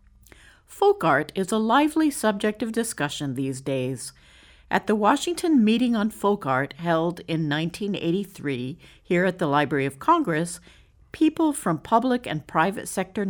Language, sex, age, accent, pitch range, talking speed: English, female, 50-69, American, 145-225 Hz, 145 wpm